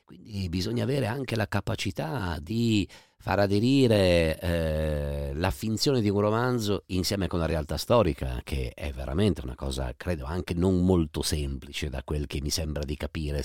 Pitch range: 75-105 Hz